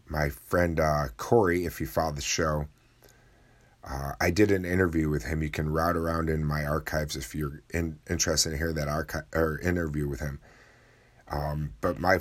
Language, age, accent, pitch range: English, 30-49, American, 75-85 Hz